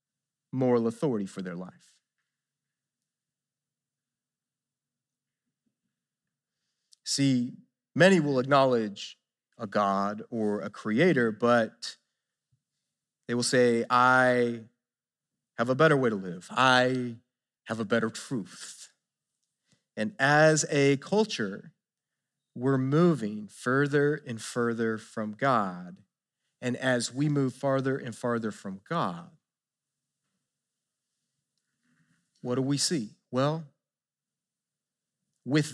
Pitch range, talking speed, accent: 115-145 Hz, 95 wpm, American